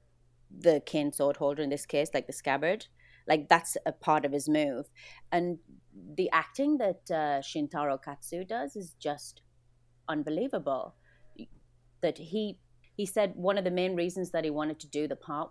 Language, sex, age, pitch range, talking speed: English, female, 30-49, 140-160 Hz, 170 wpm